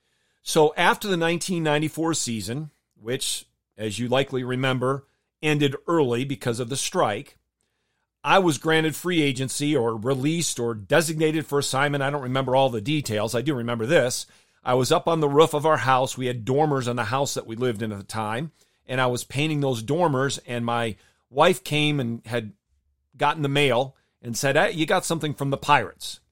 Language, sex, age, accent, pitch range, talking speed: English, male, 40-59, American, 120-150 Hz, 185 wpm